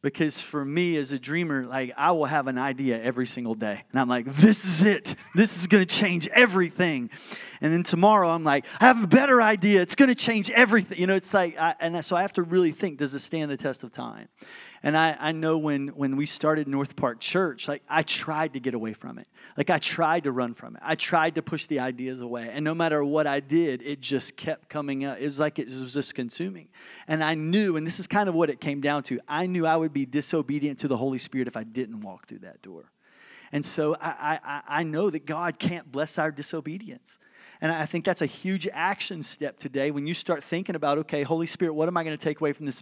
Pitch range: 145-180 Hz